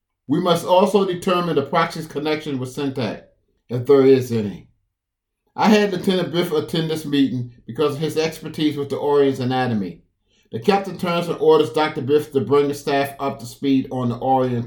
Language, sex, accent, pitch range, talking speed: English, male, American, 125-160 Hz, 185 wpm